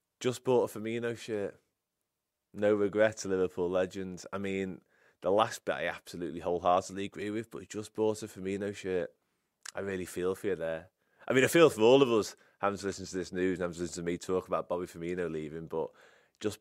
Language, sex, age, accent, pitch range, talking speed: English, male, 20-39, British, 90-105 Hz, 215 wpm